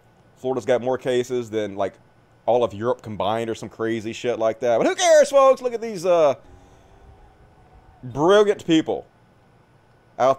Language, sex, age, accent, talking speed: English, male, 30-49, American, 155 wpm